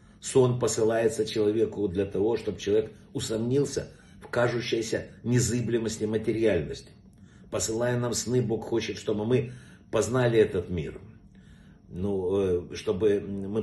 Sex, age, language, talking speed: male, 50-69, Russian, 110 wpm